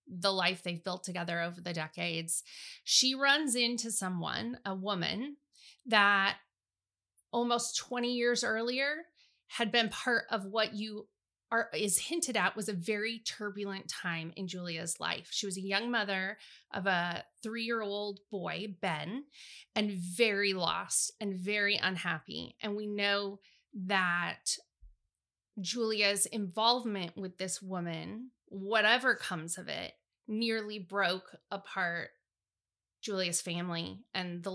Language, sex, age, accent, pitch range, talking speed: English, female, 30-49, American, 180-220 Hz, 130 wpm